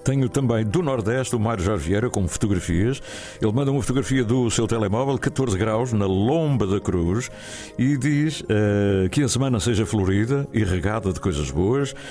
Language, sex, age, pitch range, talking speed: Portuguese, male, 60-79, 95-130 Hz, 180 wpm